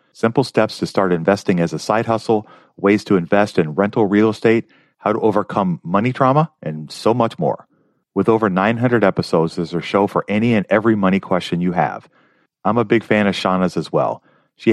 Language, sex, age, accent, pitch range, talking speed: English, male, 40-59, American, 95-115 Hz, 205 wpm